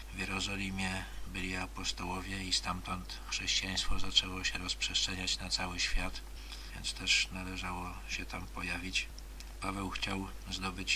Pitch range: 90-95 Hz